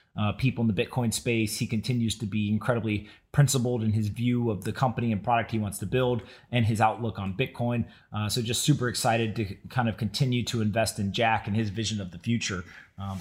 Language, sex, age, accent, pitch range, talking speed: English, male, 30-49, American, 110-125 Hz, 220 wpm